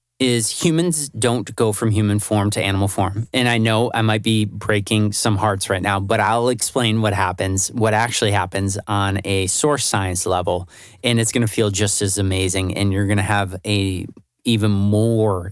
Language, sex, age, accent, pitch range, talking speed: English, male, 30-49, American, 95-115 Hz, 195 wpm